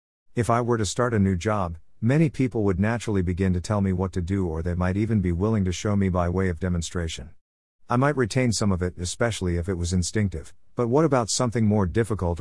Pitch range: 90-115 Hz